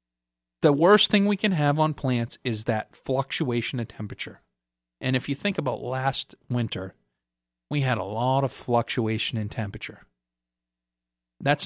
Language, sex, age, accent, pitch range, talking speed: English, male, 40-59, American, 90-135 Hz, 150 wpm